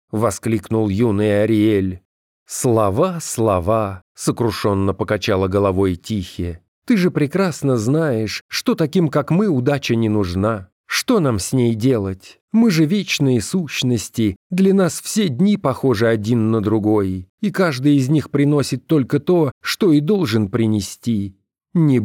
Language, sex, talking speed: Russian, male, 140 wpm